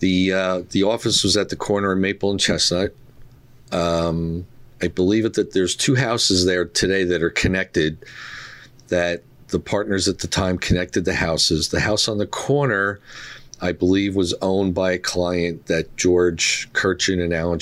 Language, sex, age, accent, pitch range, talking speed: English, male, 50-69, American, 85-95 Hz, 175 wpm